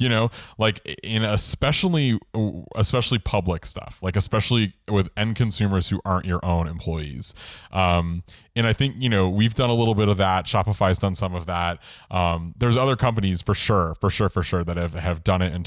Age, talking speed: 20-39, 200 wpm